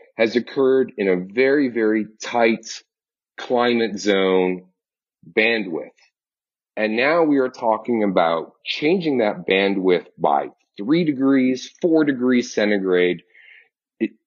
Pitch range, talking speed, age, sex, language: 95-135 Hz, 110 wpm, 40-59, male, English